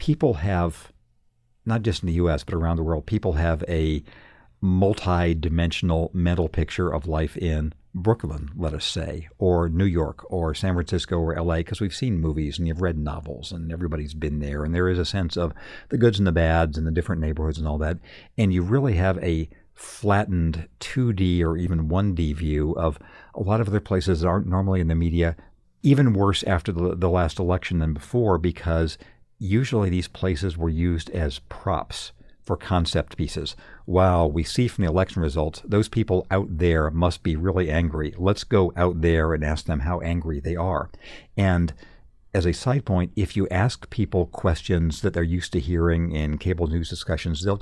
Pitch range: 80-95 Hz